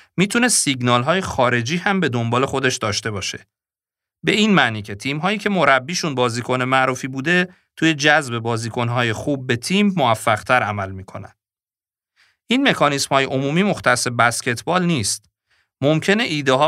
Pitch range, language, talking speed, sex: 120-170 Hz, Persian, 145 wpm, male